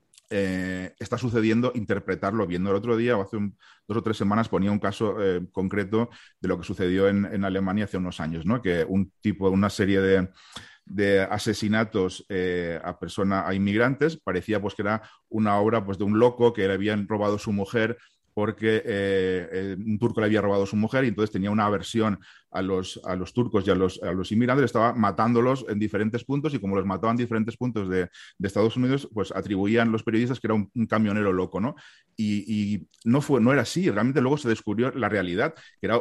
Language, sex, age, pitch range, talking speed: Spanish, male, 30-49, 95-115 Hz, 215 wpm